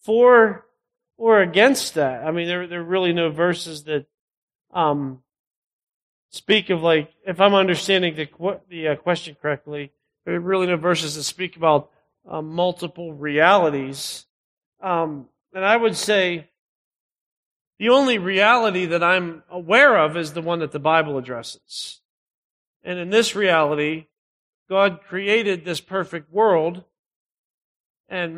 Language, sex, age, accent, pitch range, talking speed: English, male, 40-59, American, 165-205 Hz, 135 wpm